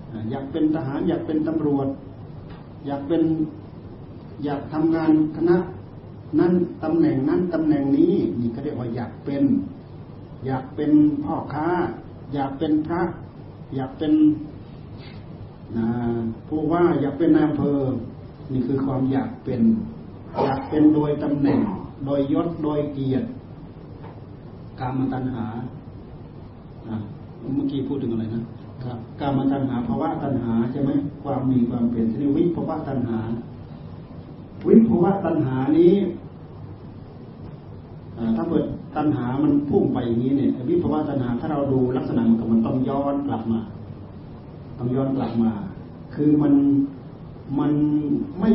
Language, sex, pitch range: Thai, male, 120-155 Hz